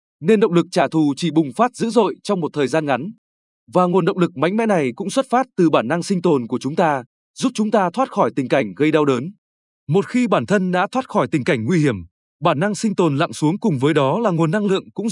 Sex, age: male, 20-39